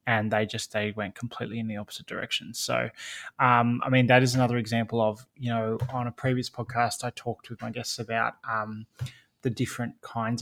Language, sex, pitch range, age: English, male, 115-130 Hz, 20-39